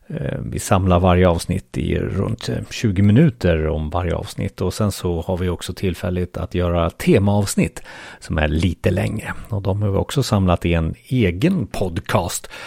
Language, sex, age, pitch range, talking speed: Swedish, male, 40-59, 90-125 Hz, 165 wpm